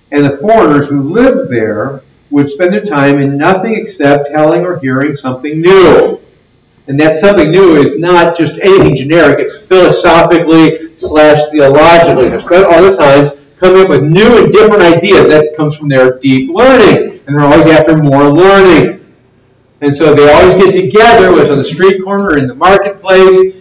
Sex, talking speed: male, 175 wpm